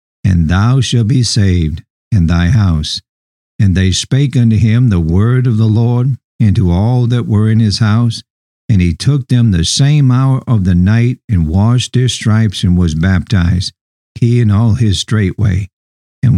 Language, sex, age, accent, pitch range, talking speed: English, male, 60-79, American, 95-120 Hz, 180 wpm